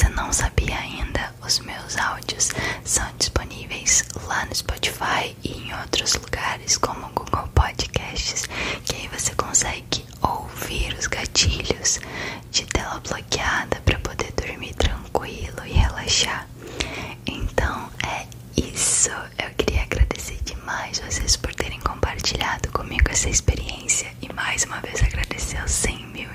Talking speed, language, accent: 130 wpm, Portuguese, Brazilian